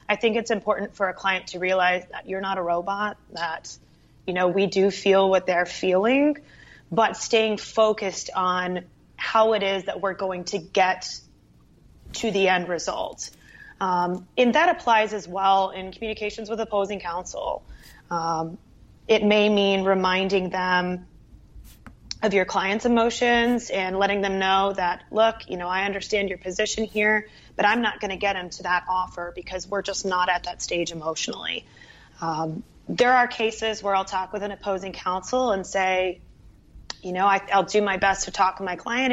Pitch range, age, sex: 180-210 Hz, 30-49, female